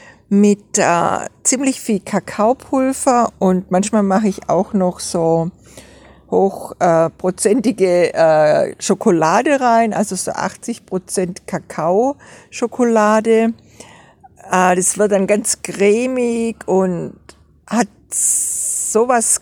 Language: German